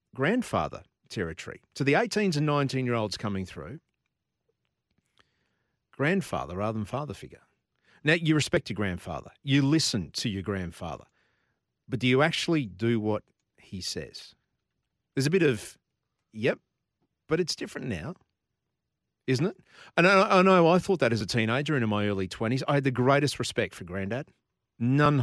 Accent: Australian